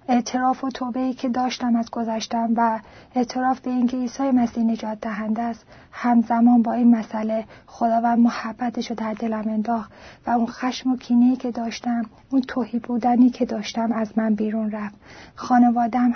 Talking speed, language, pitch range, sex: 165 wpm, Persian, 225-250 Hz, female